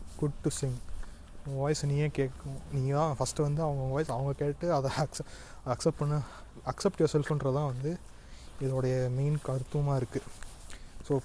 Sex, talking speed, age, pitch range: male, 140 wpm, 20-39, 120-150 Hz